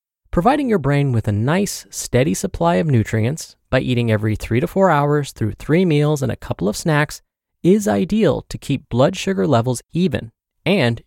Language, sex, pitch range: English, male, 110-160 Hz